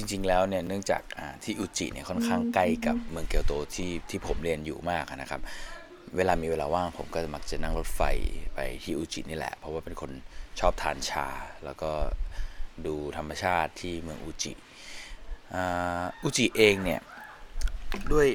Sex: male